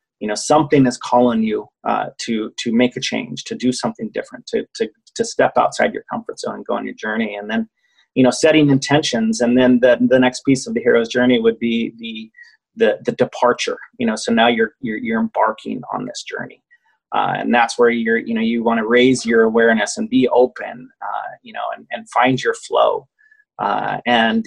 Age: 30-49